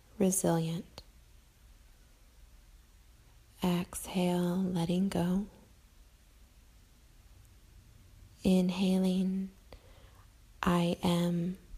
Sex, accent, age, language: female, American, 30-49, English